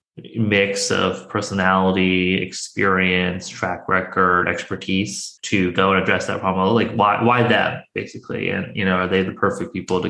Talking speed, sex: 160 wpm, male